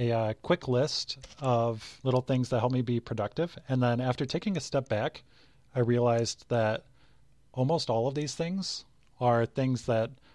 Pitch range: 115-135 Hz